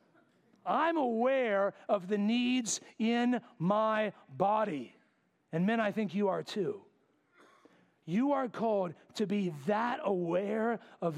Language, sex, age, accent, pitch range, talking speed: English, male, 40-59, American, 160-220 Hz, 125 wpm